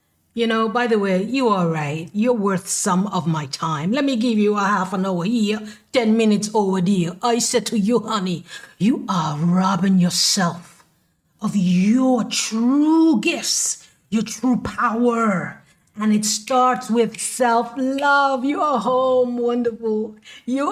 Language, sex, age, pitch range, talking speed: English, female, 50-69, 215-275 Hz, 155 wpm